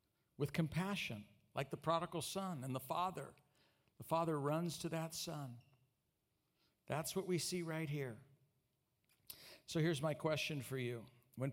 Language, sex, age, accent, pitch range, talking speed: English, male, 50-69, American, 130-165 Hz, 145 wpm